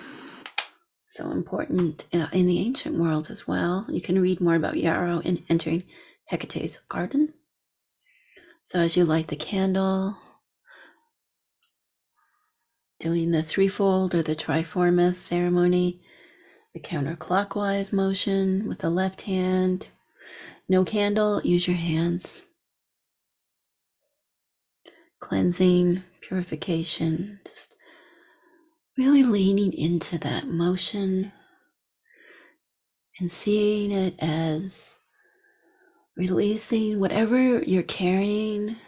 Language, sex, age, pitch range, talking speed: English, female, 30-49, 175-270 Hz, 90 wpm